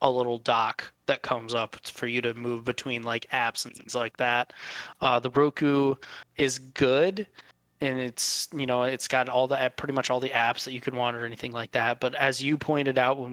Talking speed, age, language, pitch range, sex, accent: 220 wpm, 20-39, English, 120-135 Hz, male, American